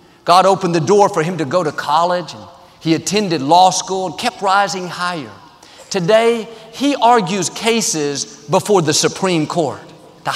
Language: English